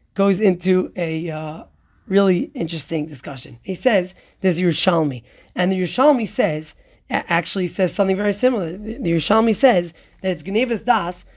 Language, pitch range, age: English, 175-225 Hz, 30-49